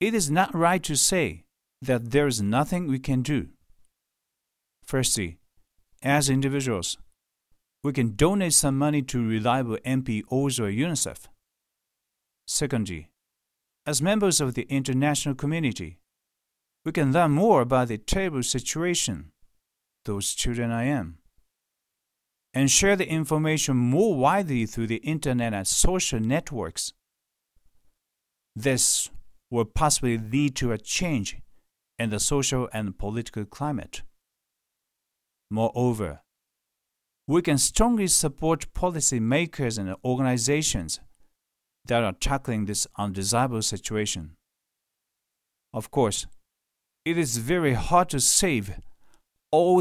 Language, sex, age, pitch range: Japanese, male, 50-69, 105-145 Hz